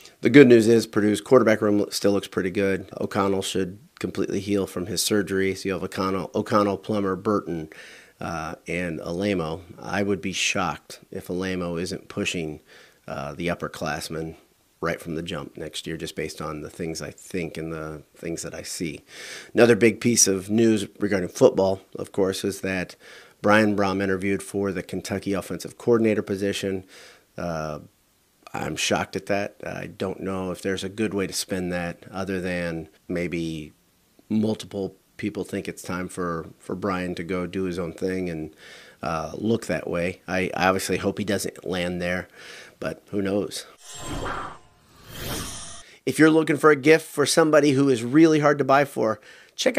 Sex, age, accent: male, 30-49, American